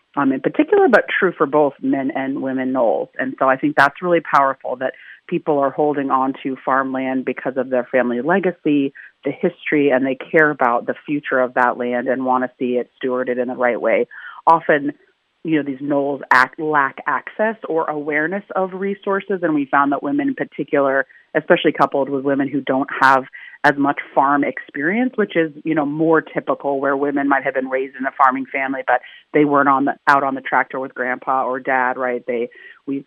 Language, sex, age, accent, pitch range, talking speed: English, female, 30-49, American, 130-155 Hz, 205 wpm